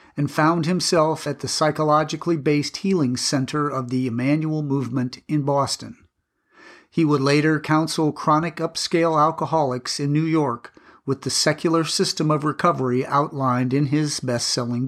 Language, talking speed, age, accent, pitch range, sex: English, 135 wpm, 50-69, American, 130-155 Hz, male